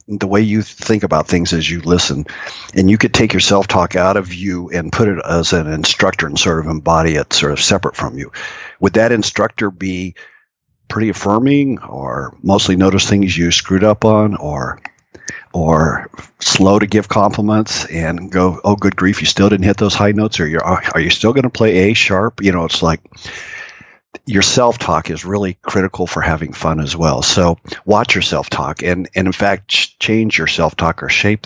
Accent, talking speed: American, 200 wpm